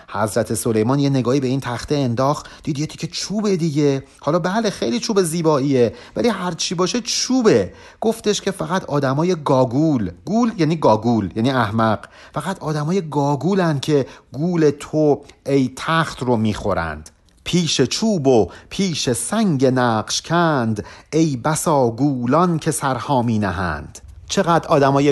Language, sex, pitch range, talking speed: Persian, male, 125-165 Hz, 135 wpm